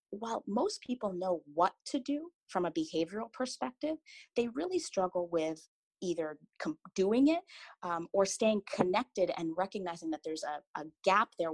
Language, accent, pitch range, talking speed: English, American, 160-230 Hz, 155 wpm